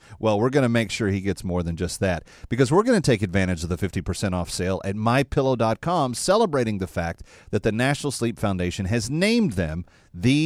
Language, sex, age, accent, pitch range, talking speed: English, male, 40-59, American, 100-140 Hz, 210 wpm